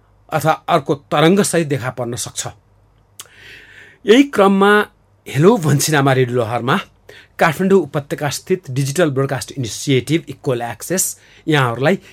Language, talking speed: English, 110 wpm